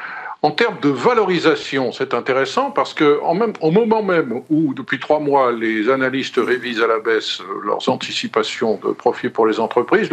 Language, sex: French, male